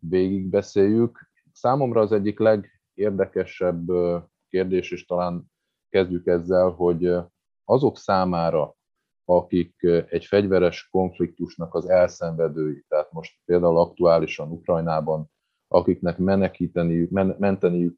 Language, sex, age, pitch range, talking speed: Hungarian, male, 30-49, 80-95 Hz, 90 wpm